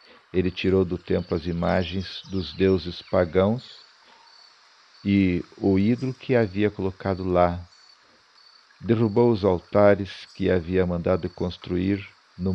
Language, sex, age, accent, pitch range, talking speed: Portuguese, male, 50-69, Brazilian, 90-105 Hz, 115 wpm